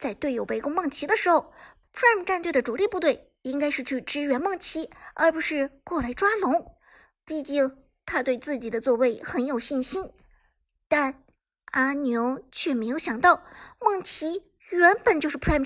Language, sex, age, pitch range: Chinese, male, 50-69, 260-355 Hz